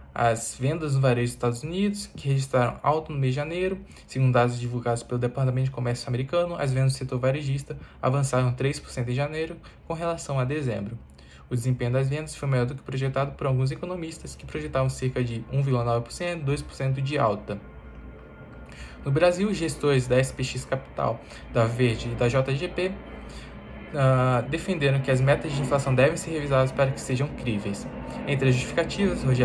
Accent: Brazilian